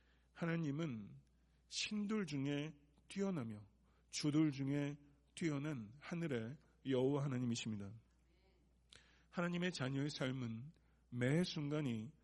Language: Korean